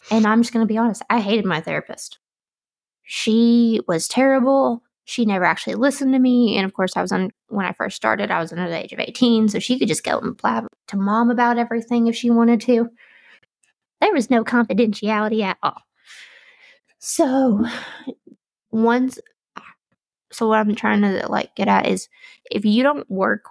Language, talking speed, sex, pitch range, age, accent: English, 185 wpm, female, 190-235 Hz, 20-39, American